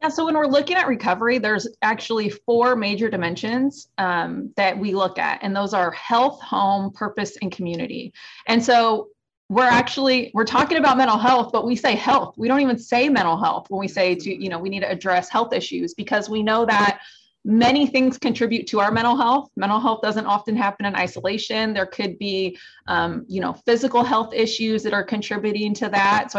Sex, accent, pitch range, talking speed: female, American, 195-245 Hz, 200 wpm